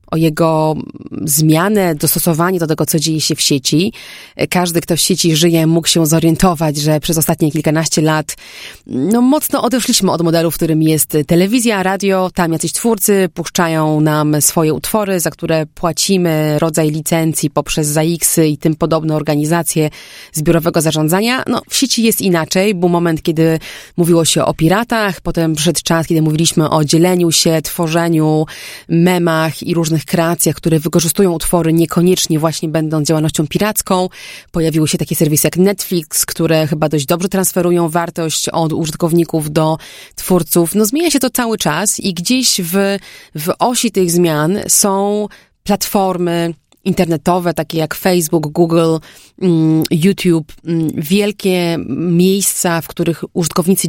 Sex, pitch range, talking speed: female, 160-190 Hz, 145 wpm